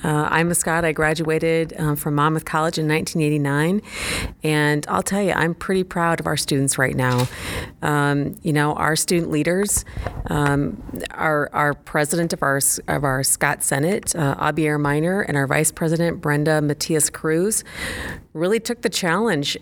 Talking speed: 165 wpm